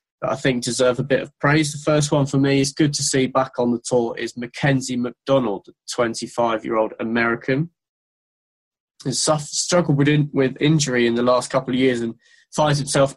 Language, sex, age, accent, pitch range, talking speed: English, male, 20-39, British, 120-145 Hz, 175 wpm